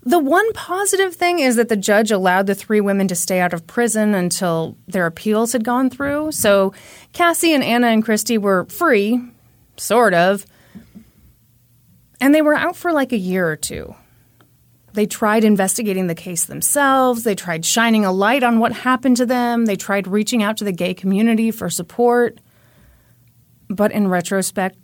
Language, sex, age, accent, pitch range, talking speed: English, female, 30-49, American, 165-235 Hz, 175 wpm